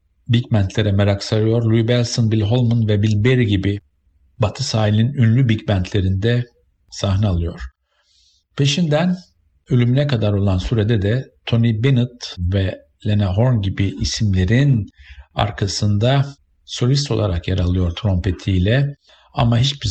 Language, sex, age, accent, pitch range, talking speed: Turkish, male, 50-69, native, 95-120 Hz, 120 wpm